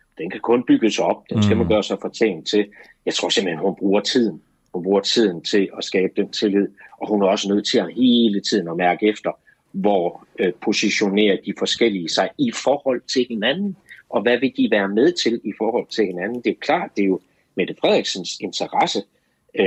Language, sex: Danish, male